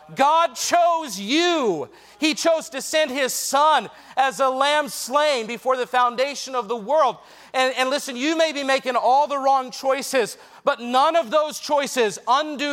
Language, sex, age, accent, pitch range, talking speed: English, male, 40-59, American, 240-295 Hz, 170 wpm